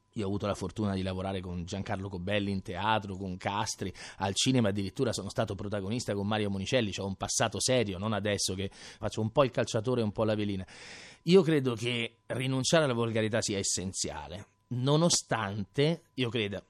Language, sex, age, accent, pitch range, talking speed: Italian, male, 30-49, native, 105-155 Hz, 185 wpm